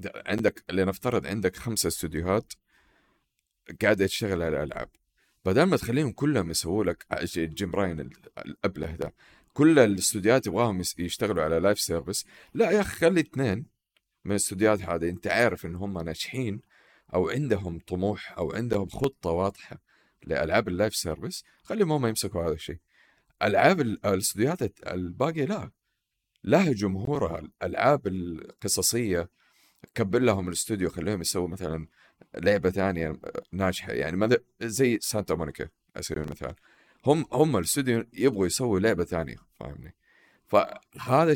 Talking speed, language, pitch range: 125 wpm, Arabic, 85-120 Hz